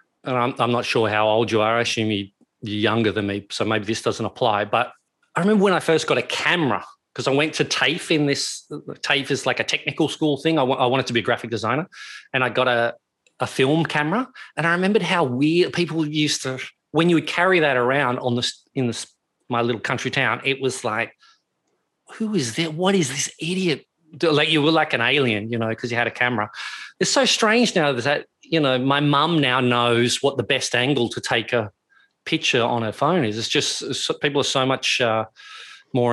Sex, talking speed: male, 230 wpm